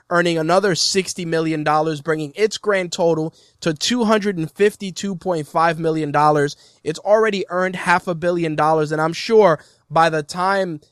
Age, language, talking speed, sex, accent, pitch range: 20-39, English, 130 wpm, male, American, 150-185 Hz